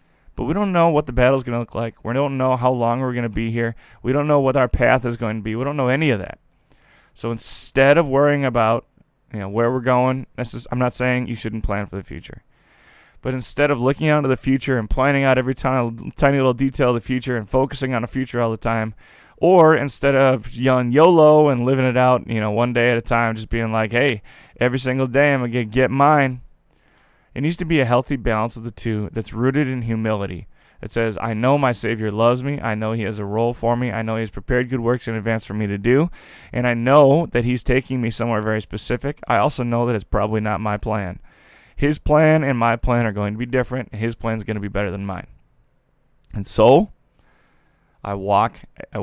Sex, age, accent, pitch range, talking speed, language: male, 20-39, American, 110-135 Hz, 245 wpm, English